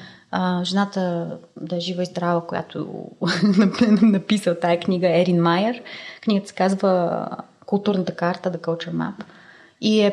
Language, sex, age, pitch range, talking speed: Bulgarian, female, 20-39, 170-200 Hz, 135 wpm